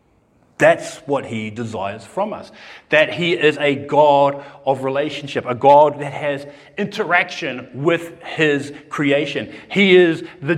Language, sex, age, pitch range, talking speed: English, male, 40-59, 150-200 Hz, 135 wpm